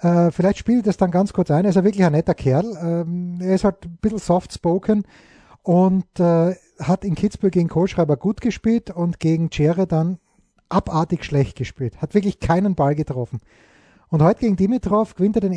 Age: 30-49